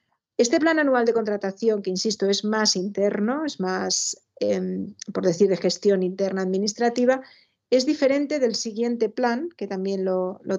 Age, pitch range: 40-59, 195-240 Hz